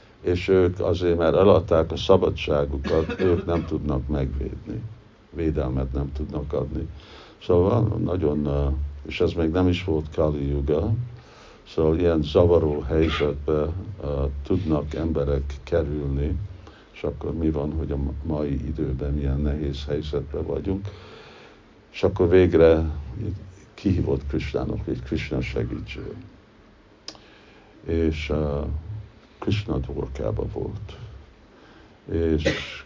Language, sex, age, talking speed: Hungarian, male, 60-79, 105 wpm